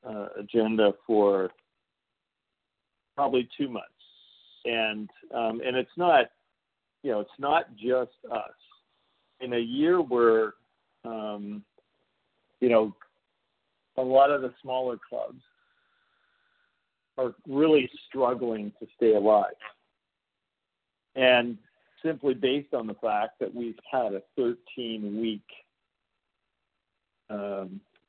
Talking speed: 105 wpm